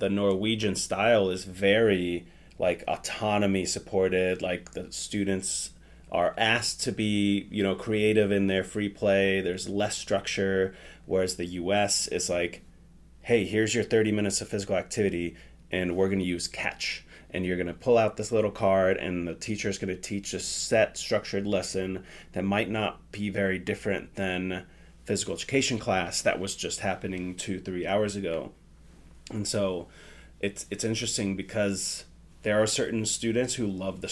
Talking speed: 165 wpm